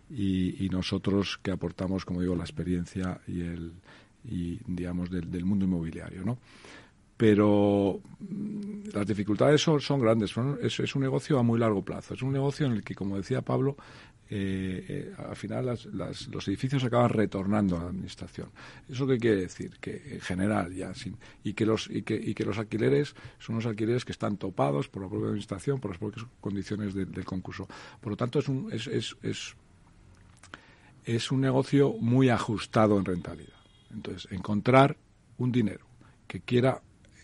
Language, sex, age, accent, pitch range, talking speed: Spanish, male, 50-69, Spanish, 95-120 Hz, 180 wpm